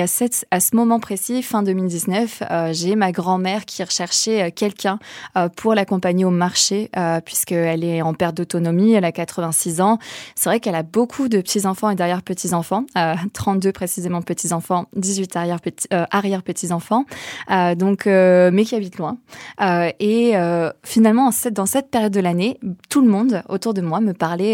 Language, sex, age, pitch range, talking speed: French, female, 20-39, 175-205 Hz, 180 wpm